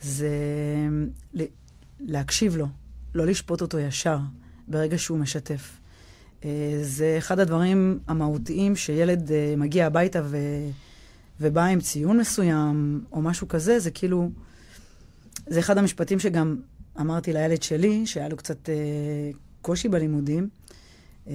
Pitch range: 150-175 Hz